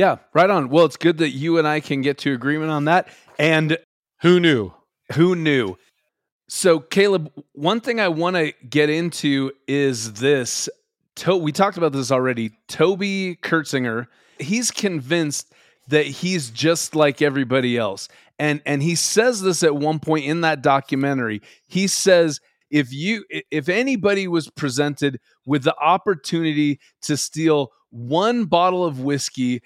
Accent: American